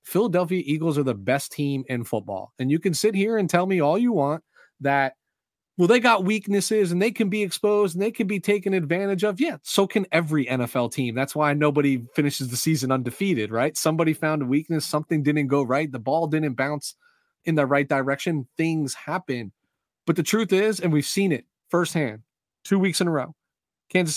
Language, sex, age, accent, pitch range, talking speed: English, male, 30-49, American, 130-170 Hz, 205 wpm